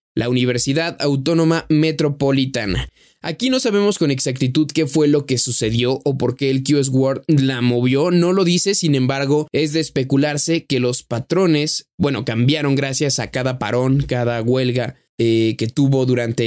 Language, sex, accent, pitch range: Spanish, male, Mexican, 125-150 Hz